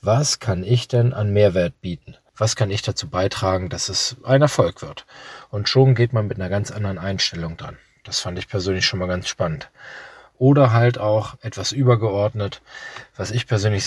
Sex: male